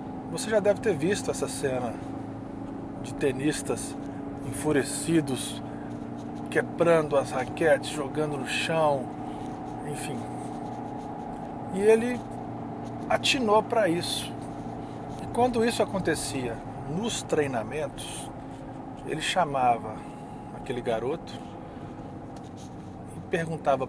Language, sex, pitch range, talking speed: Portuguese, male, 130-170 Hz, 85 wpm